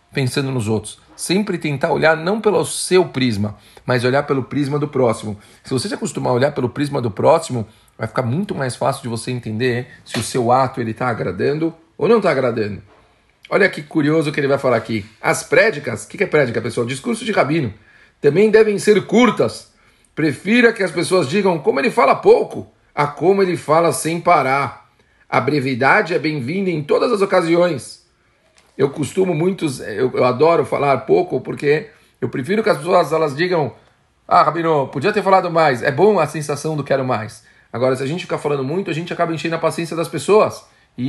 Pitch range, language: 125-175 Hz, Portuguese